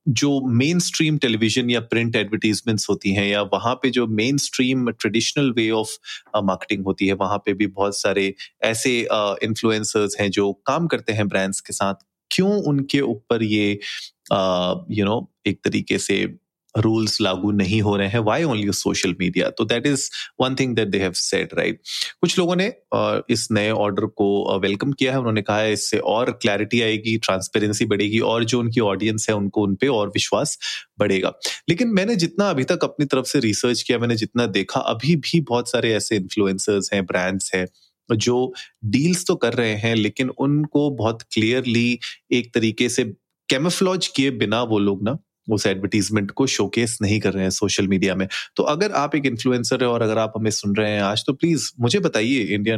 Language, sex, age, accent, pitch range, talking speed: Hindi, male, 30-49, native, 105-130 Hz, 190 wpm